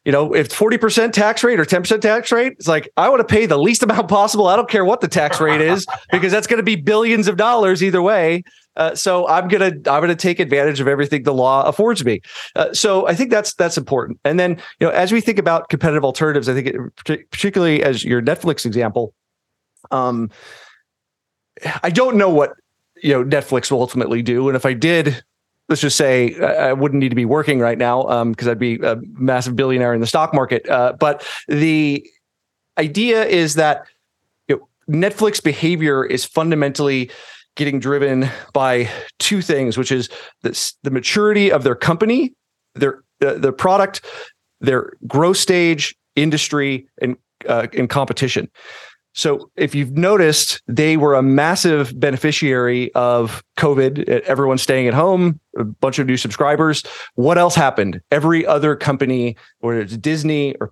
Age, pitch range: 30-49, 130-185 Hz